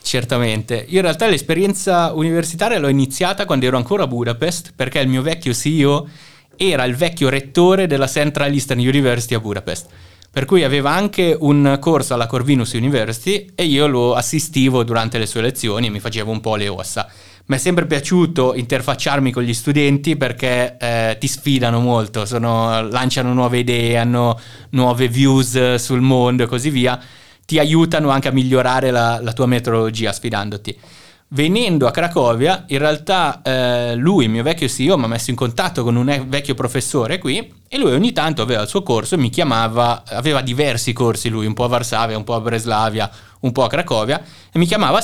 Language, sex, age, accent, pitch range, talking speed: Italian, male, 20-39, native, 115-145 Hz, 185 wpm